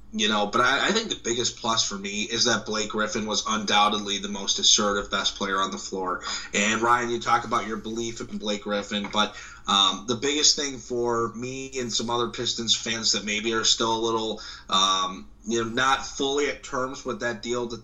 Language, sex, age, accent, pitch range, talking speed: English, male, 20-39, American, 105-120 Hz, 215 wpm